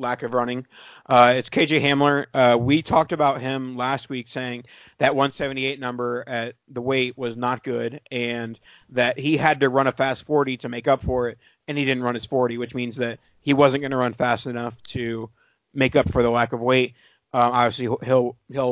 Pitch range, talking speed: 120-140 Hz, 210 wpm